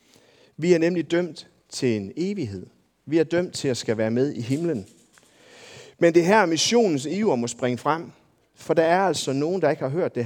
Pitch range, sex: 120-165 Hz, male